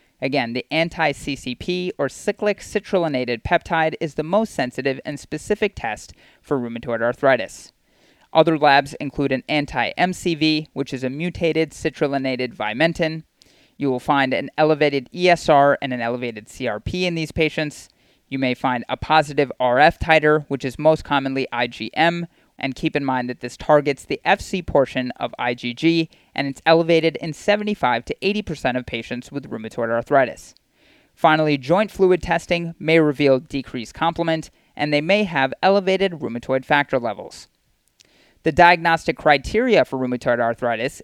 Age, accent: 30-49, American